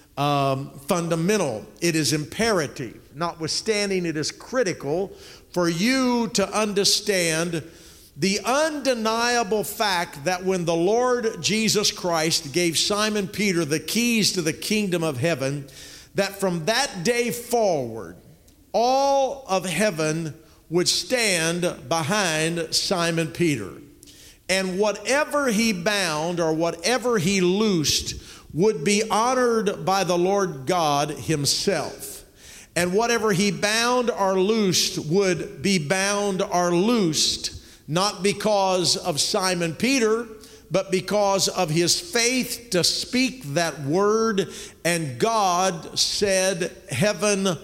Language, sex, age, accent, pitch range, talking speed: English, male, 50-69, American, 170-215 Hz, 115 wpm